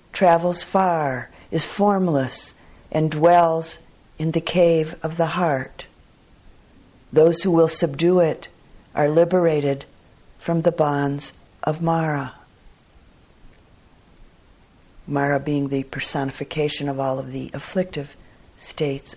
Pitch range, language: 140-170 Hz, English